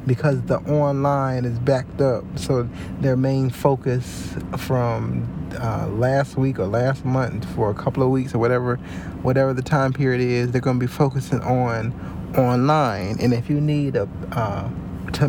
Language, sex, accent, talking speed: English, male, American, 165 wpm